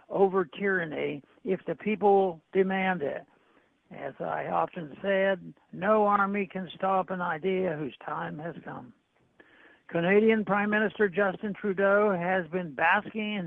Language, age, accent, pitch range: English, 60-79, American, 180-210 Hz